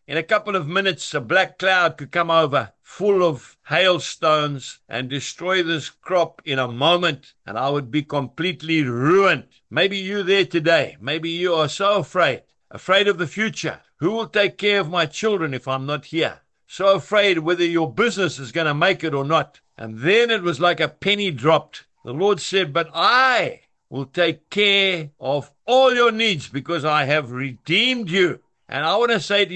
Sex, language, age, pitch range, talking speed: male, English, 60-79, 145-195 Hz, 190 wpm